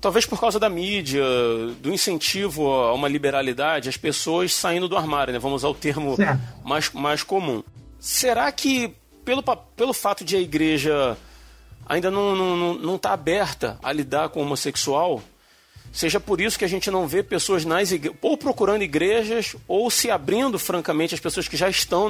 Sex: male